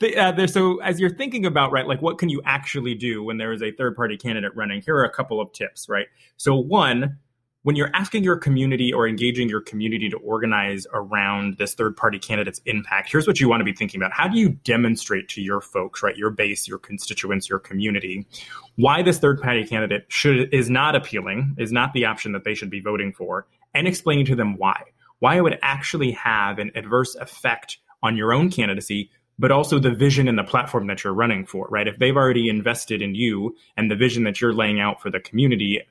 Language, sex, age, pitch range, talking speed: English, male, 20-39, 105-140 Hz, 215 wpm